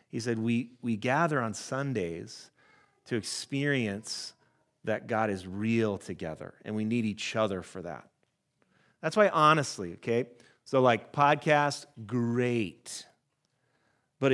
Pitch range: 110-140 Hz